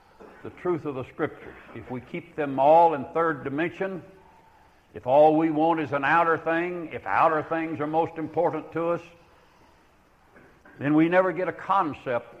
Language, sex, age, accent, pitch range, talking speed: English, male, 60-79, American, 135-170 Hz, 170 wpm